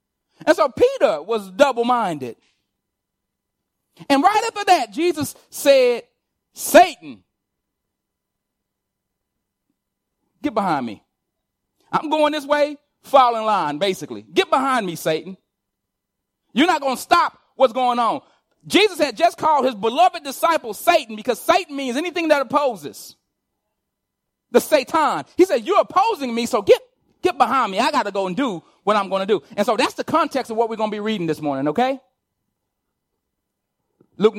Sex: male